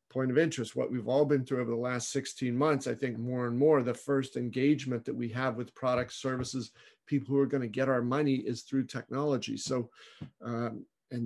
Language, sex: English, male